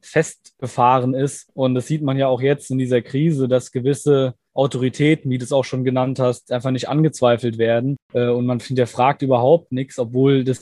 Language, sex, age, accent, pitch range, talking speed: German, male, 20-39, German, 120-140 Hz, 190 wpm